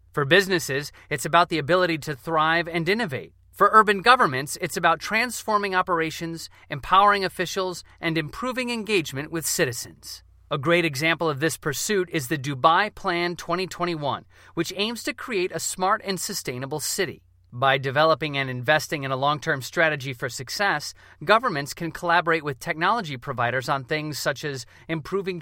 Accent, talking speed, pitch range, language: American, 155 wpm, 145-185 Hz, English